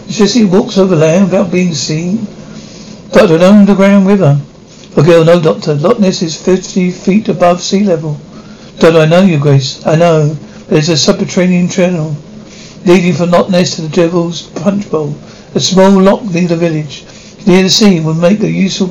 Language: English